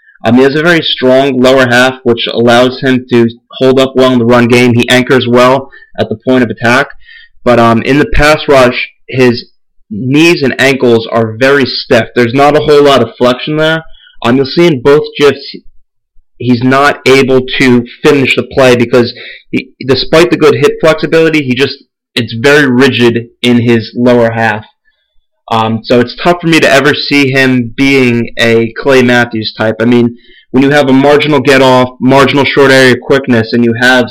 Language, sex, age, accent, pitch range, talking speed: English, male, 30-49, American, 120-140 Hz, 185 wpm